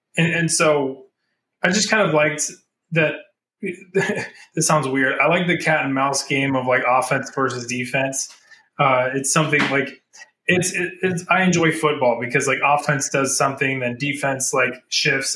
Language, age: English, 20-39